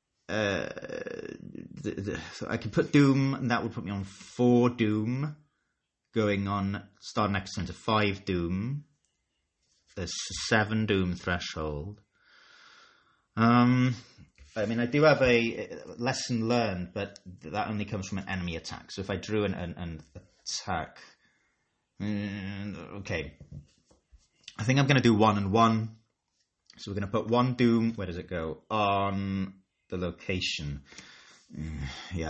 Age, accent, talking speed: 30-49, British, 150 wpm